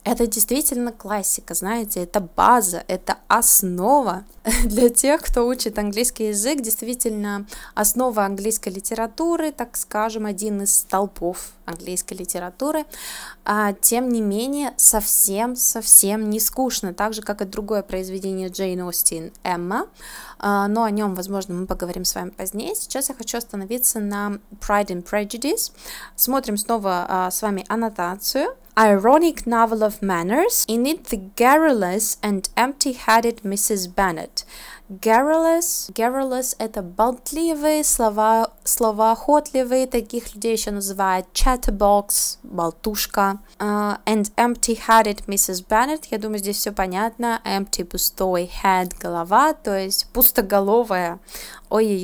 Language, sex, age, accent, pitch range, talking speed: Russian, female, 20-39, native, 195-240 Hz, 120 wpm